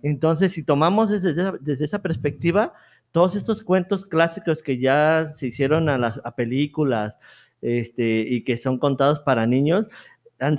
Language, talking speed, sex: Spanish, 140 wpm, male